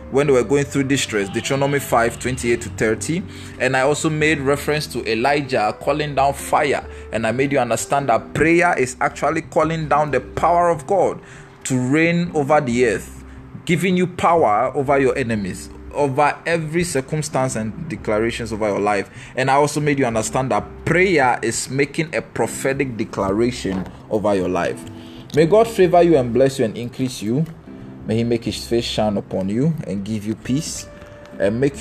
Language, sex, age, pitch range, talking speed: English, male, 20-39, 100-140 Hz, 175 wpm